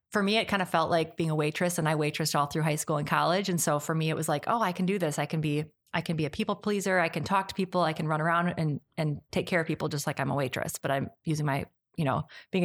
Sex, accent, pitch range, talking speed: female, American, 160-185 Hz, 320 wpm